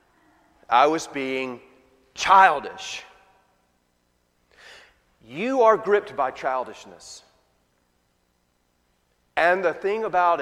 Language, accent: English, American